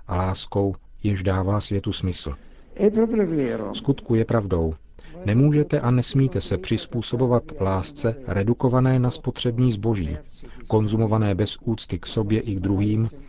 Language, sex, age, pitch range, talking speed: Czech, male, 40-59, 95-115 Hz, 120 wpm